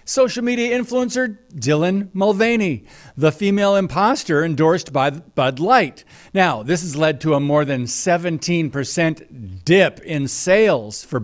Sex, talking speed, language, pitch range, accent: male, 135 wpm, English, 145-200 Hz, American